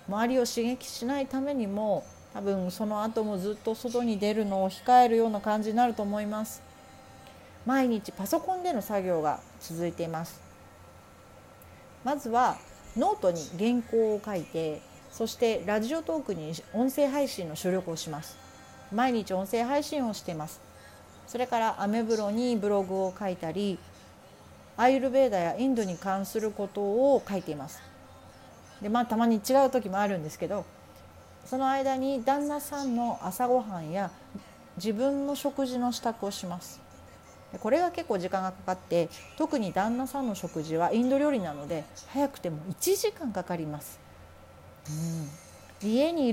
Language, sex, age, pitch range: Japanese, female, 40-59, 175-250 Hz